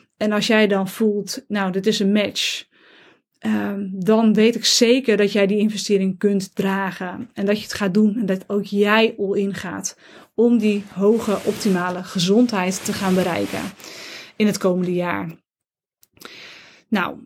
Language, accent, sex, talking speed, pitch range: Dutch, Dutch, female, 155 wpm, 195-230 Hz